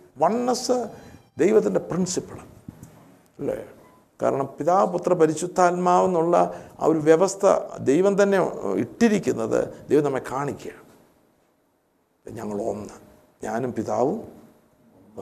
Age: 50-69